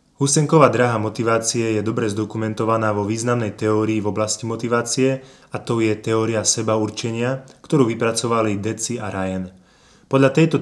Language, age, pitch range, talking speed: Slovak, 20-39, 105-125 Hz, 140 wpm